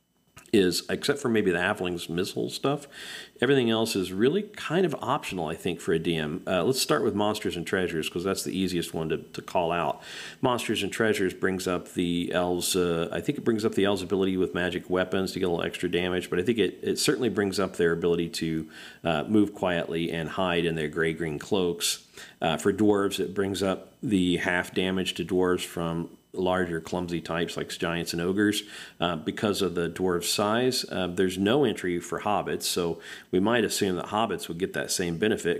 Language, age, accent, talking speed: English, 50-69, American, 205 wpm